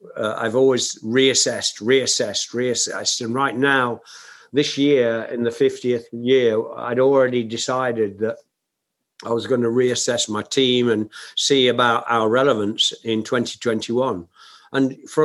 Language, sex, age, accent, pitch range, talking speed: English, male, 50-69, British, 115-140 Hz, 140 wpm